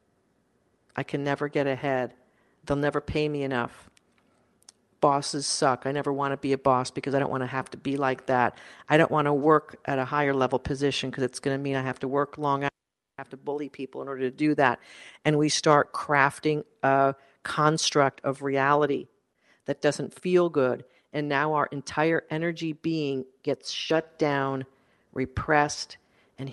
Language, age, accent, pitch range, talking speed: English, 50-69, American, 135-165 Hz, 190 wpm